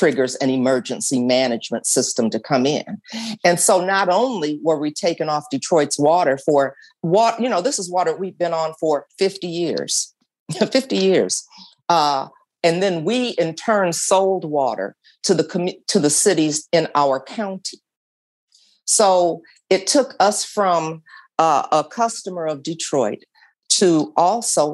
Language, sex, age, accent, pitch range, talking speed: English, female, 50-69, American, 150-200 Hz, 150 wpm